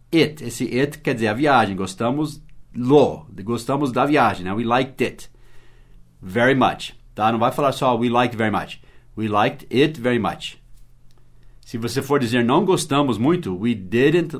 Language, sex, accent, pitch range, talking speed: English, male, Brazilian, 115-145 Hz, 170 wpm